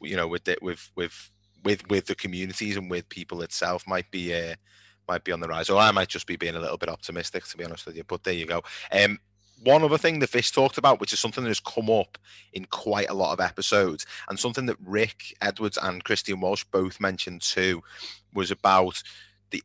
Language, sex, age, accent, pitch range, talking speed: English, male, 20-39, British, 90-100 Hz, 225 wpm